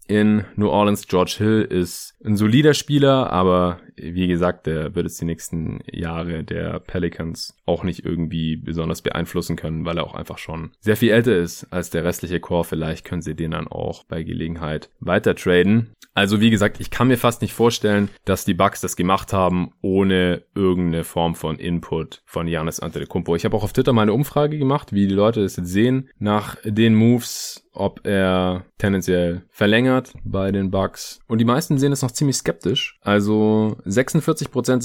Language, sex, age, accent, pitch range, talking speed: German, male, 20-39, German, 85-110 Hz, 185 wpm